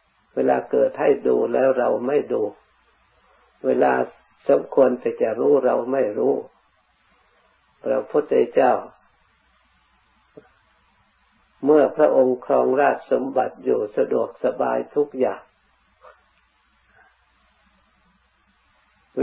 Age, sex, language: 50-69, male, Thai